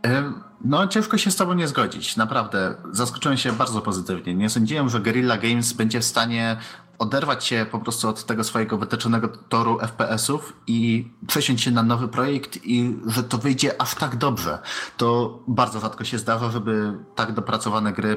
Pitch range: 105-125 Hz